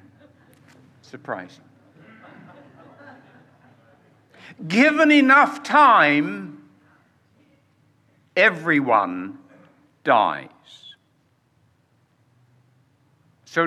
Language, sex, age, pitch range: English, male, 60-79, 135-220 Hz